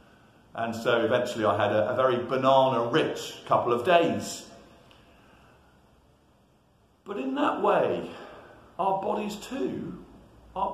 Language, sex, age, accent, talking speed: English, male, 50-69, British, 110 wpm